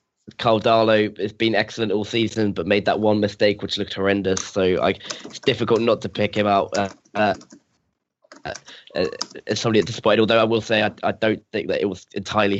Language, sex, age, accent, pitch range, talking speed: English, male, 10-29, British, 100-115 Hz, 210 wpm